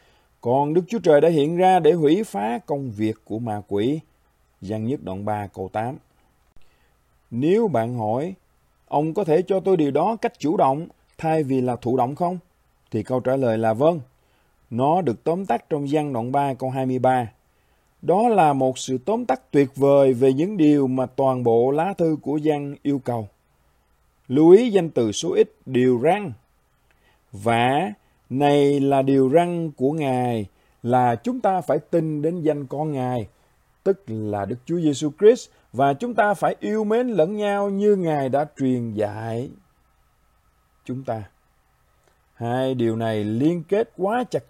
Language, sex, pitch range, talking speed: Vietnamese, male, 120-165 Hz, 175 wpm